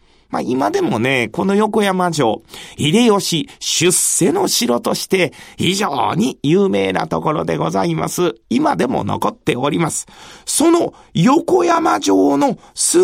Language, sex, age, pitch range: Japanese, male, 40-59, 155-225 Hz